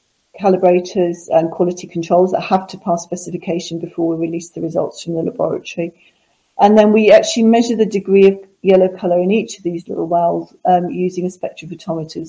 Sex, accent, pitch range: female, British, 170-190 Hz